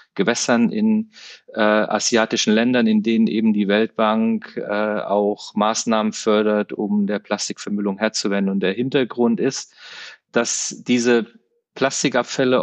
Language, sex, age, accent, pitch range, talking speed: German, male, 40-59, German, 110-130 Hz, 120 wpm